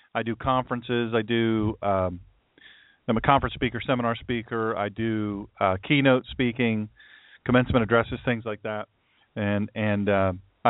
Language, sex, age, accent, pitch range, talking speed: English, male, 40-59, American, 105-145 Hz, 140 wpm